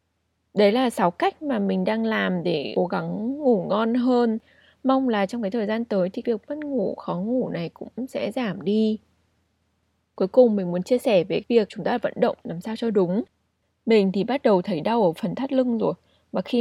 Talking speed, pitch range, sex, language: 220 wpm, 185-240 Hz, female, Vietnamese